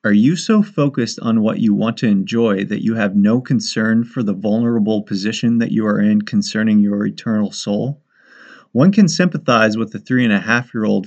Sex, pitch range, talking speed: male, 105-145 Hz, 180 wpm